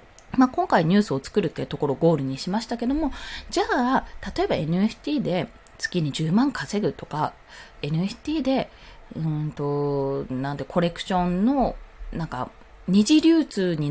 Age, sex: 20-39, female